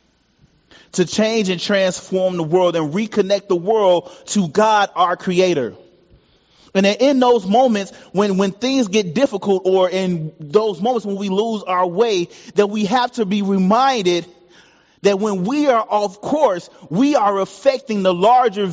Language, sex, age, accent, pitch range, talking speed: English, male, 30-49, American, 185-235 Hz, 160 wpm